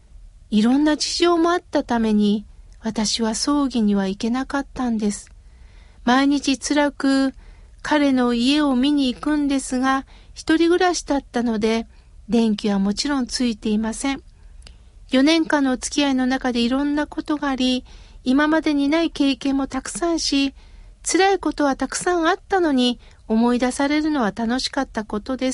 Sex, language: female, Japanese